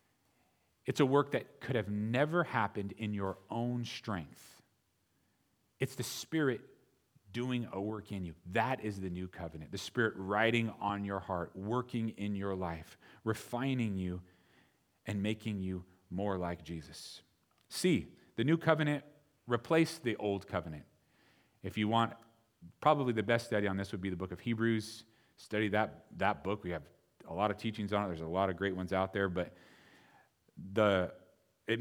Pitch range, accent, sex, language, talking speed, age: 95-125 Hz, American, male, English, 165 wpm, 40-59